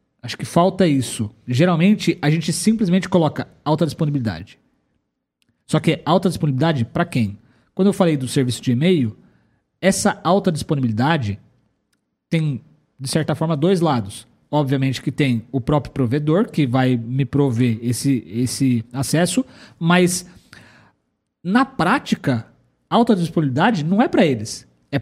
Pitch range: 130-185 Hz